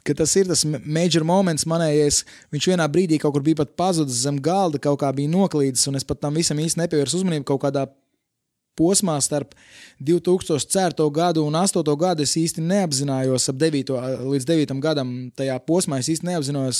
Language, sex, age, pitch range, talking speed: English, male, 20-39, 135-160 Hz, 180 wpm